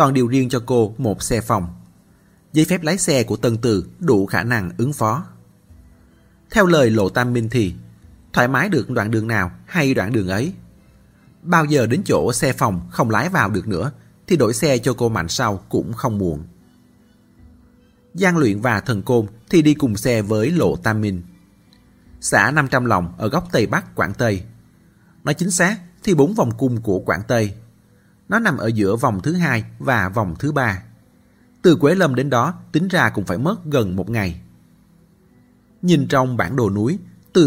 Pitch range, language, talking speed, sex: 100-140 Hz, Vietnamese, 190 wpm, male